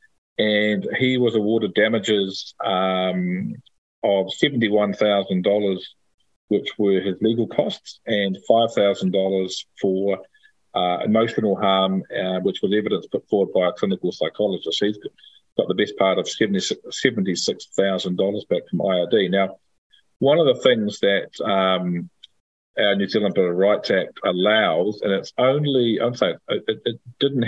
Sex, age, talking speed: male, 40-59, 135 wpm